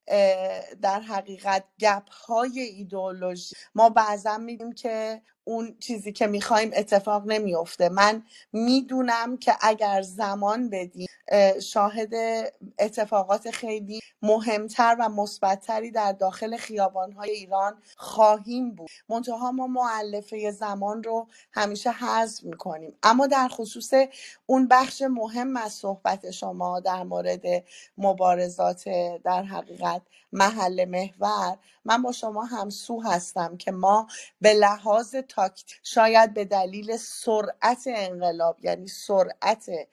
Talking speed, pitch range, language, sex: 115 wpm, 190-225 Hz, Persian, female